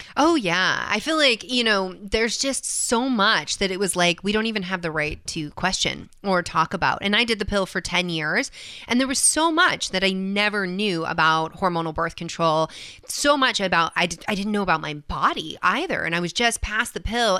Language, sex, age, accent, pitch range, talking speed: English, female, 30-49, American, 175-230 Hz, 230 wpm